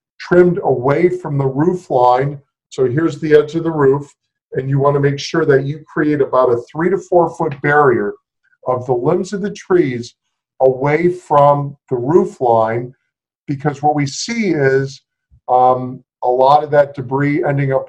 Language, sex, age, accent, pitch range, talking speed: English, male, 50-69, American, 130-155 Hz, 180 wpm